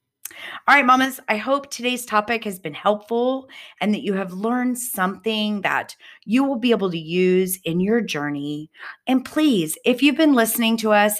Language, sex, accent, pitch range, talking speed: English, female, American, 165-220 Hz, 180 wpm